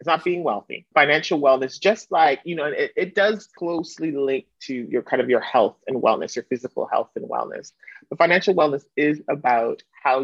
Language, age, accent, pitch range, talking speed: English, 30-49, American, 130-170 Hz, 200 wpm